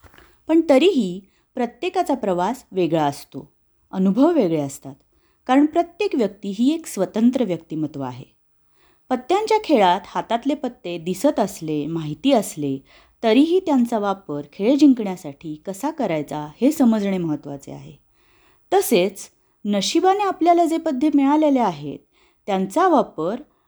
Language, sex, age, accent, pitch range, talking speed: Marathi, female, 30-49, native, 170-285 Hz, 115 wpm